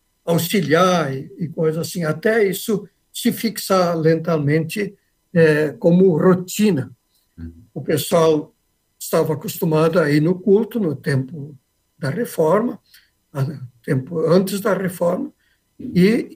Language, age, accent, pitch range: Portuguese, 60-79, Brazilian, 150-195 Hz